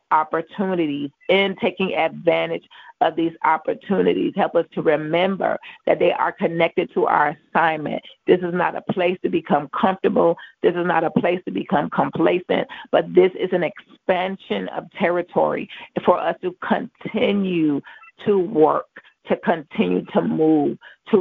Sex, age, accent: female, 30-49, American